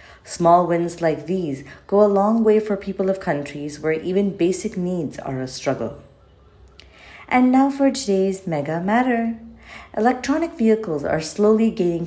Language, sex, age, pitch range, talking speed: English, female, 40-59, 150-210 Hz, 150 wpm